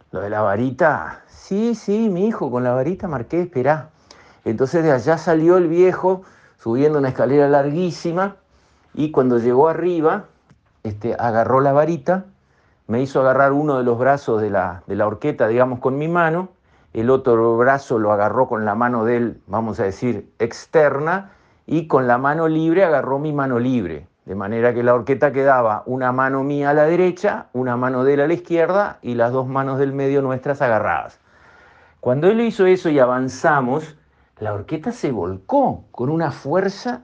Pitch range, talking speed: 120-160 Hz, 180 wpm